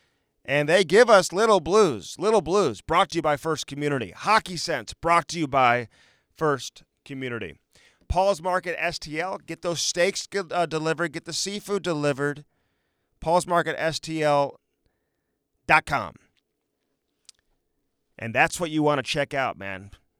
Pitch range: 140-180 Hz